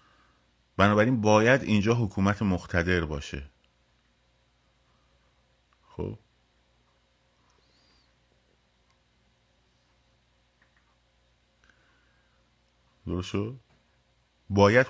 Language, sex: Persian, male